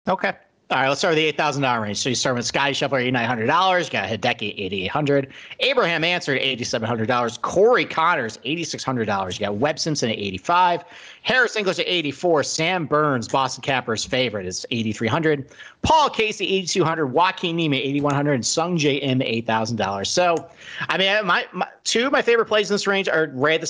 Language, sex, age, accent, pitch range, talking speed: English, male, 40-59, American, 130-185 Hz, 175 wpm